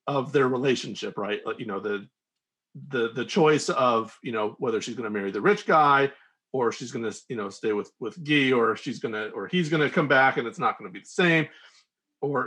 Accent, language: American, English